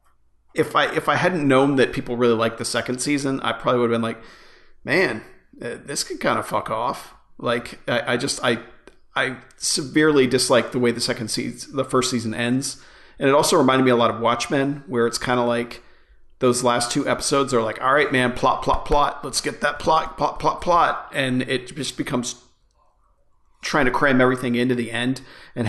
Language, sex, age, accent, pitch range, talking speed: English, male, 40-59, American, 120-135 Hz, 205 wpm